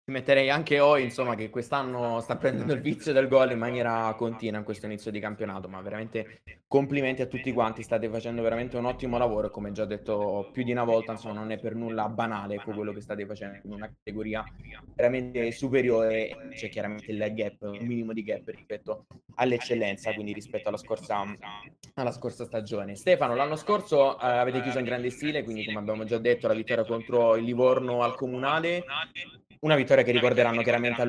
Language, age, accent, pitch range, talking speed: Italian, 20-39, native, 110-130 Hz, 190 wpm